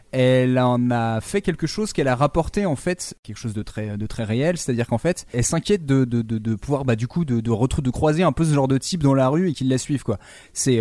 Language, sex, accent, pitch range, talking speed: French, male, French, 115-155 Hz, 295 wpm